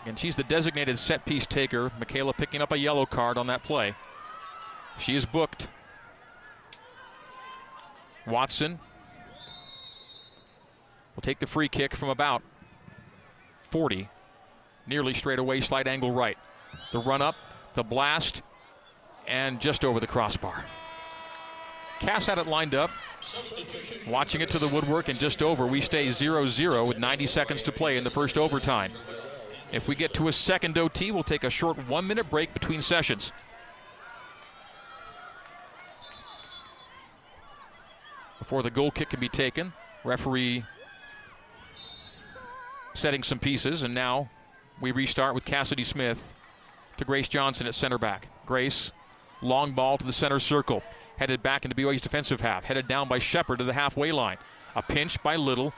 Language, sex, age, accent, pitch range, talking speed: English, male, 40-59, American, 125-155 Hz, 145 wpm